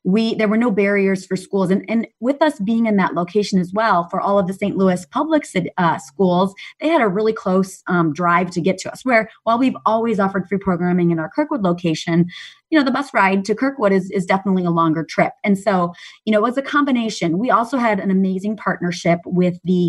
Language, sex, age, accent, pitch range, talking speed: English, female, 30-49, American, 180-225 Hz, 230 wpm